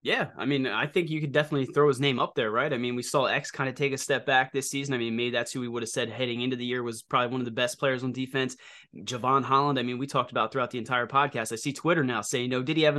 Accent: American